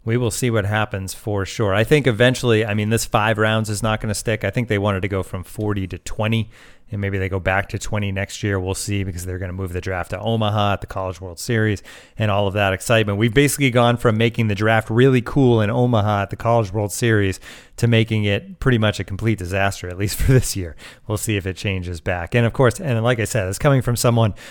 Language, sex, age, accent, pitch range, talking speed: English, male, 30-49, American, 100-125 Hz, 260 wpm